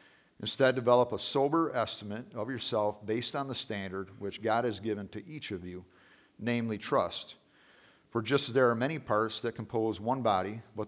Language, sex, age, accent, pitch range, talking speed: English, male, 50-69, American, 100-120 Hz, 180 wpm